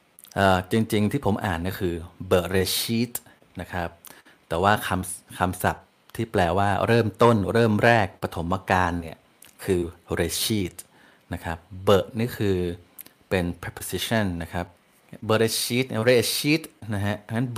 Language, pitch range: Thai, 90-110 Hz